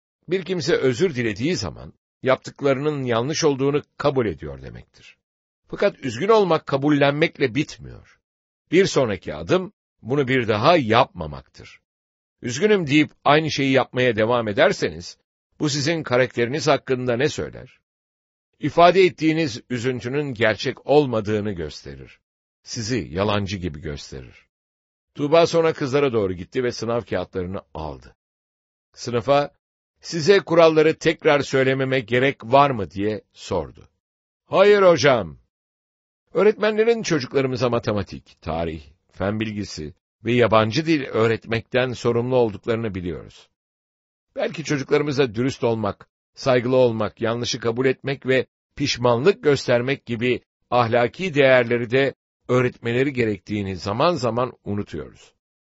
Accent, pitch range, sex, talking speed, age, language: Turkish, 100-145 Hz, male, 110 wpm, 60-79, English